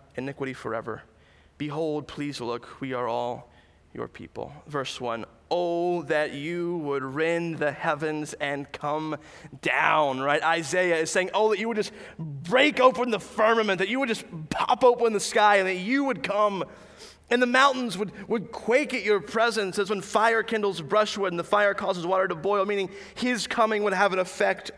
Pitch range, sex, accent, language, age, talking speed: 150-210 Hz, male, American, English, 20-39, 185 wpm